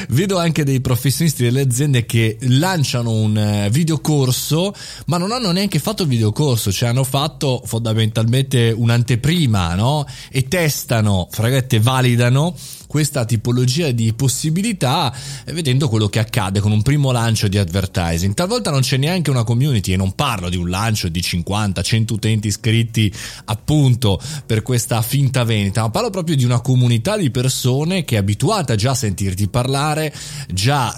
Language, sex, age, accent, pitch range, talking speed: Italian, male, 30-49, native, 110-145 Hz, 155 wpm